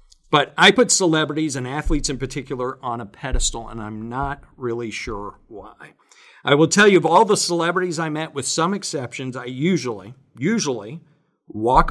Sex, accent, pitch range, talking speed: male, American, 120-155 Hz, 170 wpm